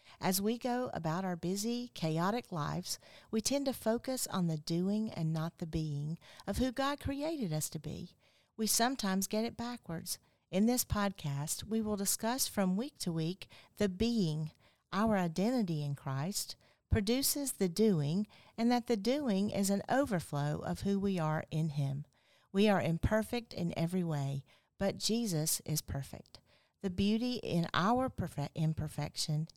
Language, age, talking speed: English, 50-69, 160 wpm